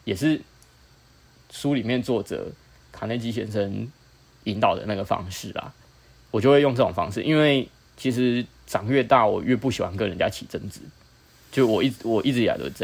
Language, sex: Chinese, male